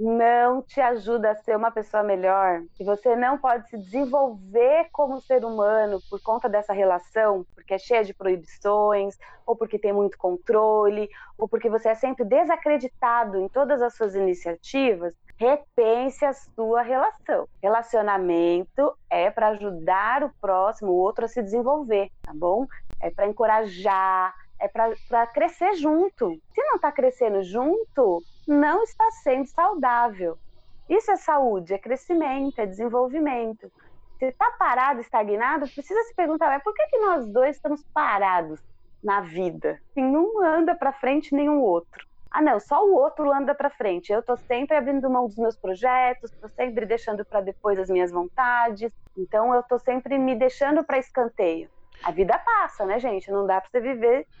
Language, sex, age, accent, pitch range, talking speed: Portuguese, female, 20-39, Brazilian, 205-280 Hz, 165 wpm